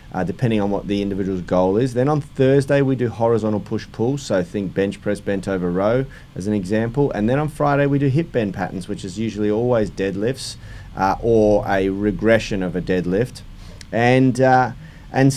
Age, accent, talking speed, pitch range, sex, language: 30-49, Australian, 195 wpm, 105-135 Hz, male, English